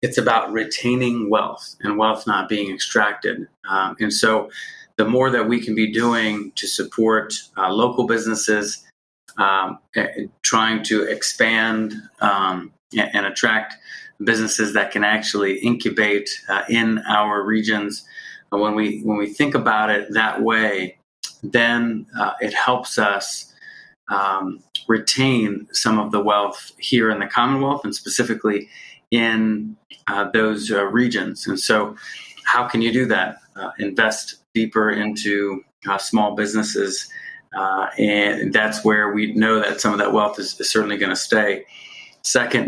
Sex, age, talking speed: male, 30-49, 145 wpm